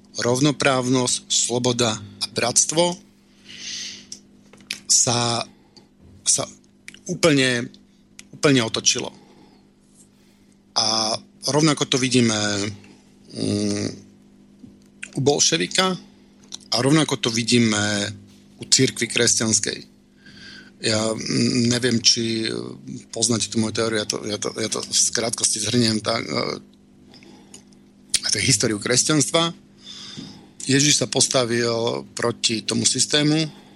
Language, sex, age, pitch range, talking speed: Slovak, male, 50-69, 110-130 Hz, 80 wpm